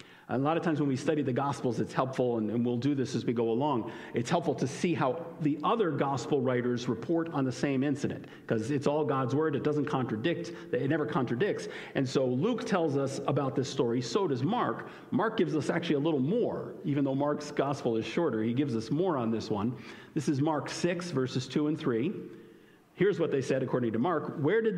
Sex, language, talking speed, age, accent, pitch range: male, English, 225 wpm, 50-69, American, 130-165 Hz